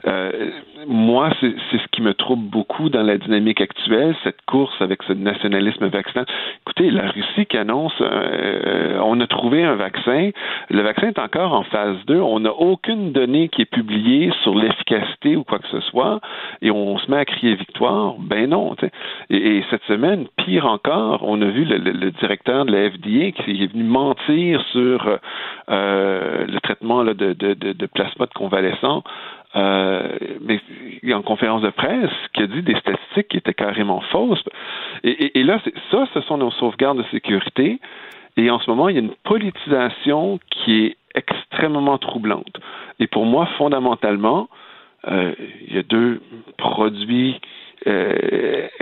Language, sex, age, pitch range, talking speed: French, male, 50-69, 105-145 Hz, 180 wpm